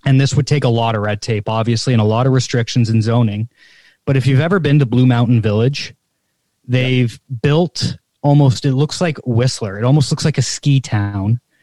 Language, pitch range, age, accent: English, 115-140 Hz, 20-39, American